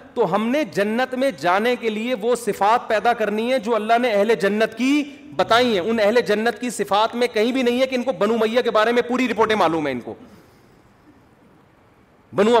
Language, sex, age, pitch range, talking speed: Urdu, male, 40-59, 180-240 Hz, 220 wpm